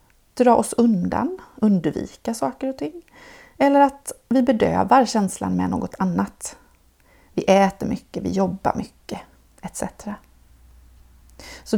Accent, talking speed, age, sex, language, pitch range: native, 115 wpm, 30-49, female, Swedish, 185-255 Hz